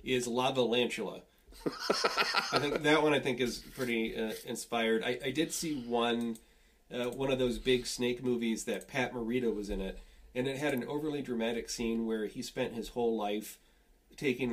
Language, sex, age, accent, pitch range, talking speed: English, male, 30-49, American, 105-125 Hz, 185 wpm